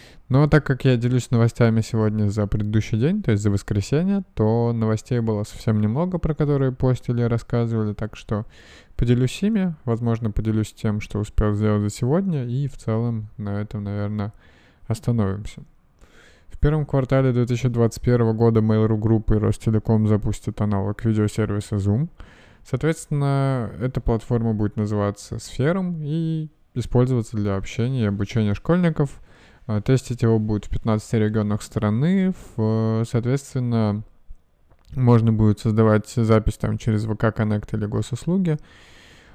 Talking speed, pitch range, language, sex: 130 wpm, 105-125 Hz, Russian, male